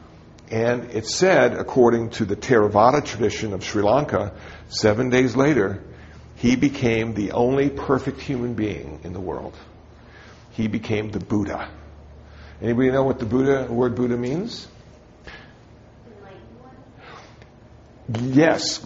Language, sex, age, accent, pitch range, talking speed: English, male, 60-79, American, 115-135 Hz, 120 wpm